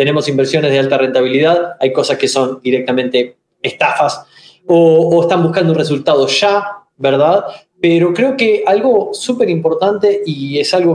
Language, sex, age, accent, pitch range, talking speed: Spanish, male, 20-39, Argentinian, 150-200 Hz, 155 wpm